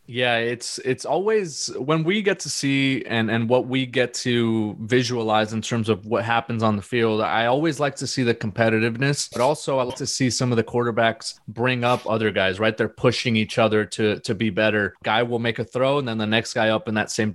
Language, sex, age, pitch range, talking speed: English, male, 20-39, 110-125 Hz, 235 wpm